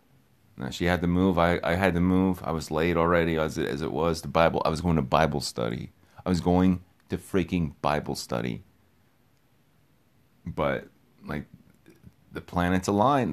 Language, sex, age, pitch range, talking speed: English, male, 30-49, 80-95 Hz, 170 wpm